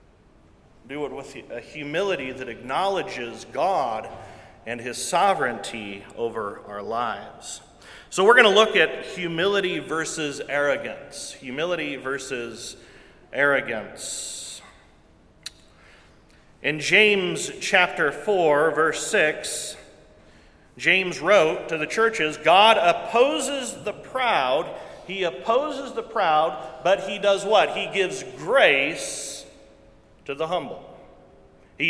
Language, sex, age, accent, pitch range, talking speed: English, male, 40-59, American, 155-220 Hz, 105 wpm